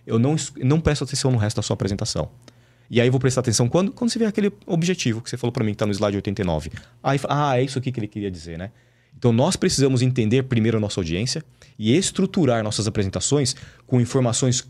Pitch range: 105-130 Hz